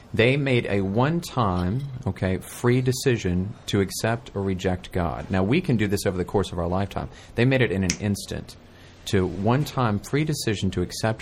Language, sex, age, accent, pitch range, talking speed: English, male, 30-49, American, 90-115 Hz, 185 wpm